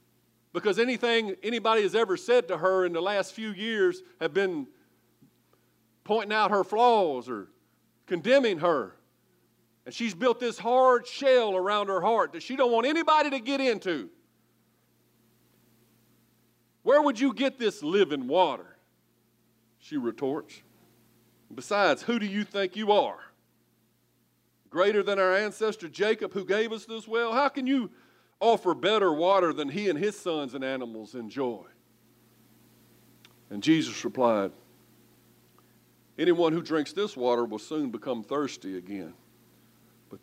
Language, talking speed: English, 140 wpm